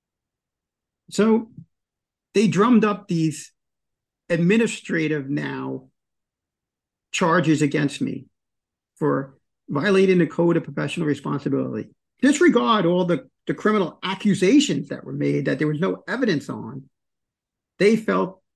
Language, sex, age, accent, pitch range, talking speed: English, male, 50-69, American, 150-200 Hz, 110 wpm